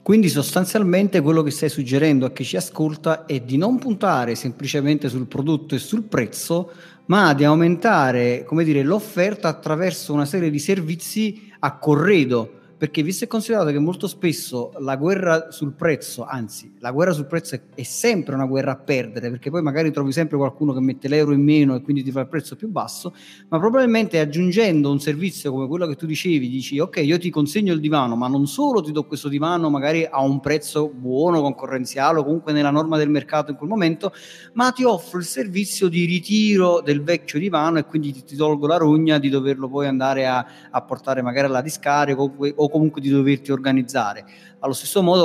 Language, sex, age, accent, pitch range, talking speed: Italian, male, 40-59, native, 140-175 Hz, 190 wpm